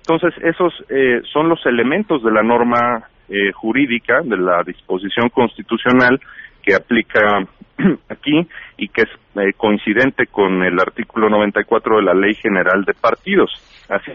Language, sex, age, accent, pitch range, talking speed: Spanish, male, 40-59, Mexican, 105-135 Hz, 145 wpm